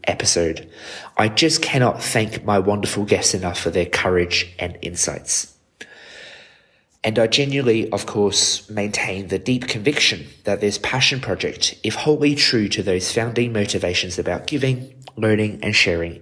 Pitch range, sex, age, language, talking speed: 95-120 Hz, male, 20-39, English, 145 wpm